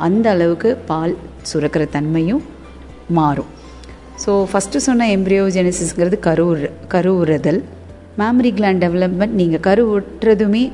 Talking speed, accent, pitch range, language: 95 wpm, native, 150-190 Hz, Tamil